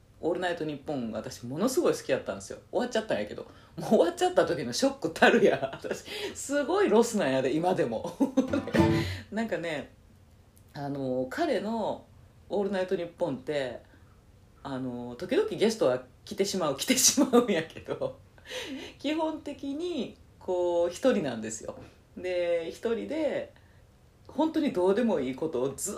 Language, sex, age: Japanese, female, 40-59